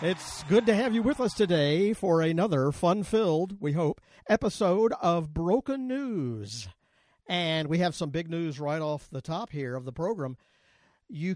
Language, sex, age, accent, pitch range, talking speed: English, male, 50-69, American, 145-195 Hz, 170 wpm